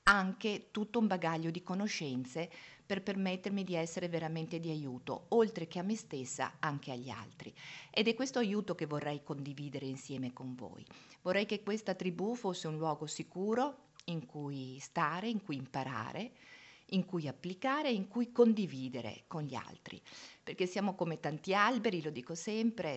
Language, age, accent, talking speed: Italian, 50-69, native, 160 wpm